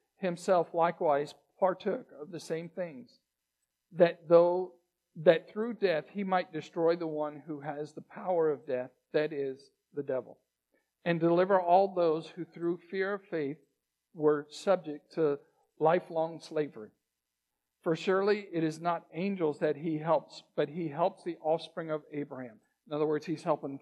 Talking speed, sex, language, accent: 160 wpm, male, English, American